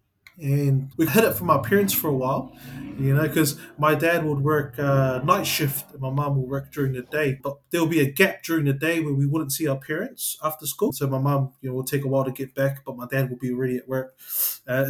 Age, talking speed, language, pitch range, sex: 20-39, 260 wpm, English, 135-160 Hz, male